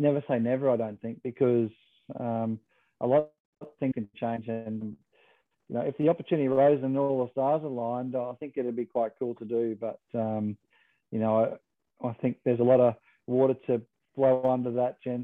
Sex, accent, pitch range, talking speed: male, Australian, 115-140 Hz, 200 wpm